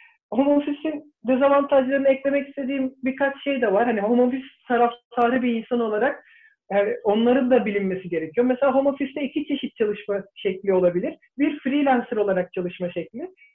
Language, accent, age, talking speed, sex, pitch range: Turkish, native, 50-69, 150 wpm, male, 210-280 Hz